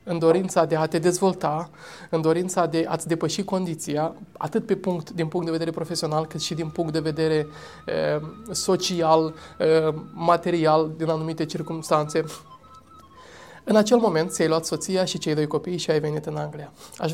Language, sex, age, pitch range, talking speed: Romanian, male, 20-39, 155-185 Hz, 170 wpm